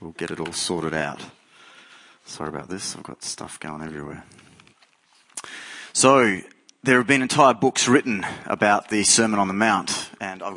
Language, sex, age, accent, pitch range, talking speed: English, male, 30-49, Australian, 95-130 Hz, 165 wpm